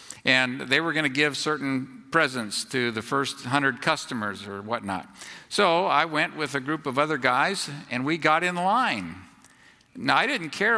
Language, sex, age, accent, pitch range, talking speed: English, male, 50-69, American, 145-230 Hz, 185 wpm